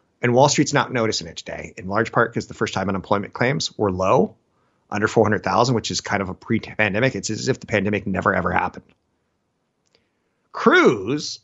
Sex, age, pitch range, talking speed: male, 30-49, 100-130 Hz, 180 wpm